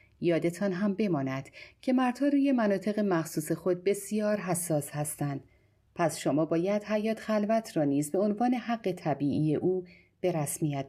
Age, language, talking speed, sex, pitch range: 40-59, English, 145 wpm, female, 150-215 Hz